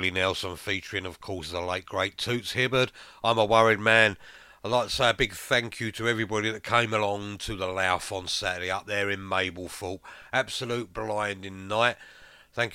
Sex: male